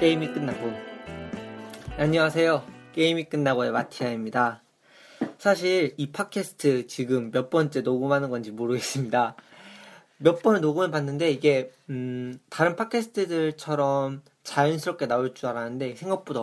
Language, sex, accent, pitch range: Korean, male, native, 125-170 Hz